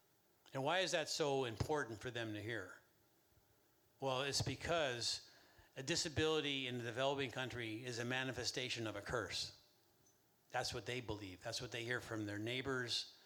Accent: American